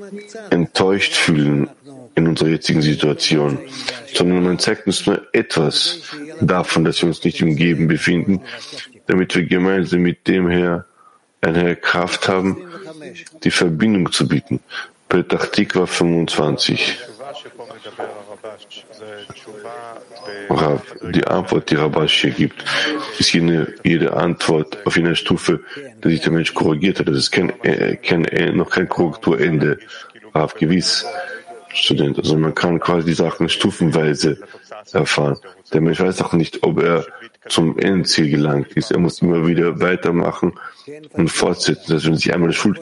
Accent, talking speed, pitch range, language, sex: German, 135 wpm, 80-95 Hz, English, male